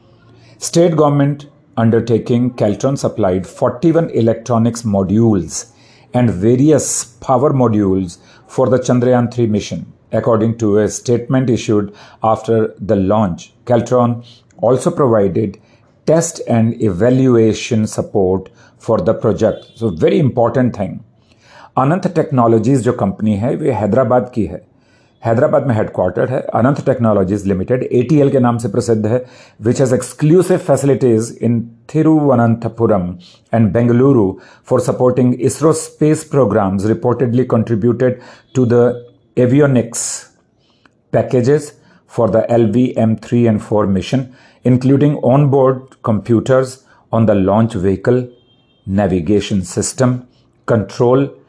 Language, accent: Hindi, native